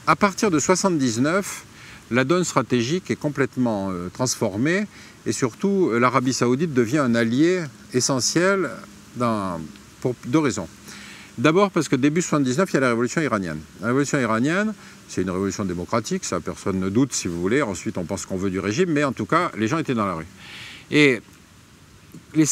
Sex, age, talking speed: male, 50-69, 175 wpm